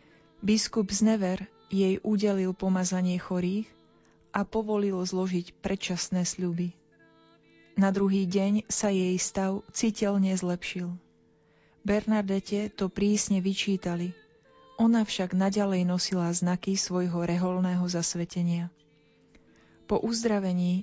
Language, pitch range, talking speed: Slovak, 180-205 Hz, 100 wpm